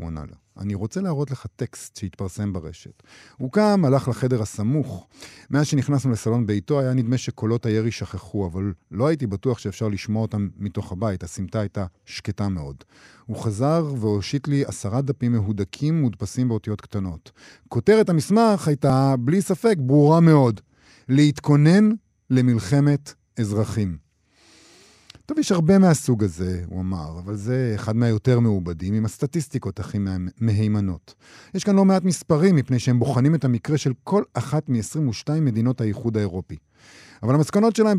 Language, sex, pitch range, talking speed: Hebrew, male, 105-150 Hz, 150 wpm